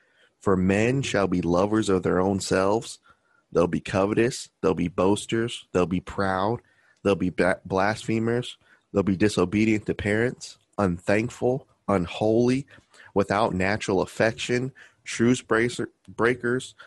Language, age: English, 30-49